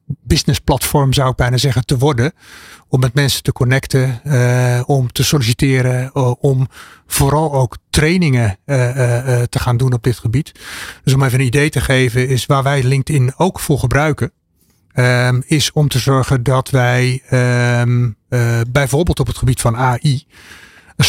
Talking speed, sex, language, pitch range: 170 wpm, male, Dutch, 125-145 Hz